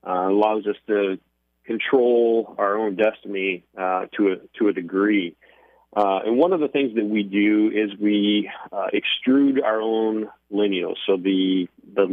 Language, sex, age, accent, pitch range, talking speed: English, male, 30-49, American, 100-110 Hz, 165 wpm